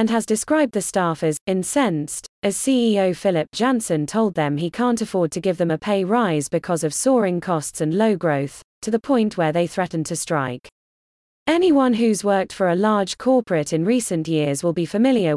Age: 20-39